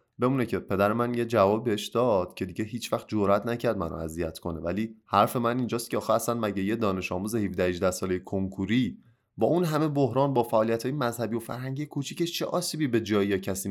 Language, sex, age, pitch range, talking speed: Persian, male, 20-39, 105-150 Hz, 210 wpm